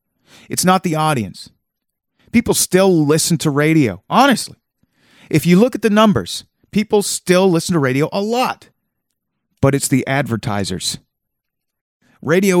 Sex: male